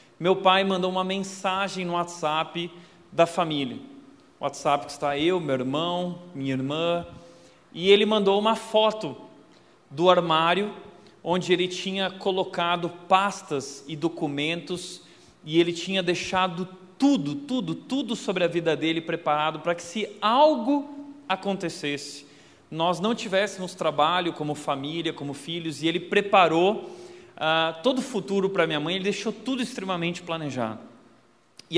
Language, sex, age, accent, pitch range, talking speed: Portuguese, male, 40-59, Brazilian, 160-200 Hz, 135 wpm